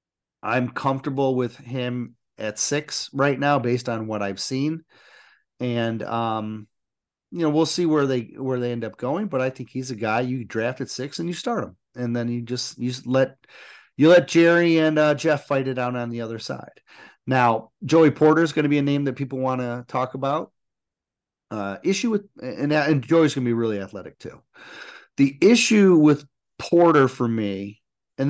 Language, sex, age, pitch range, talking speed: English, male, 30-49, 120-150 Hz, 195 wpm